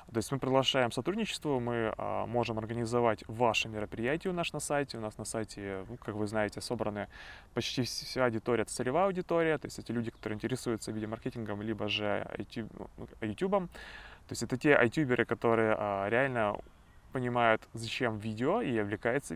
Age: 20-39